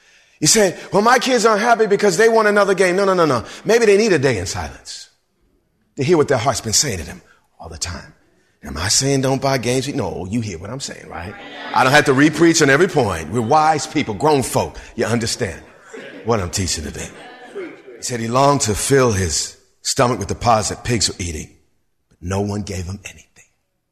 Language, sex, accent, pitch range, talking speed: English, male, American, 105-165 Hz, 220 wpm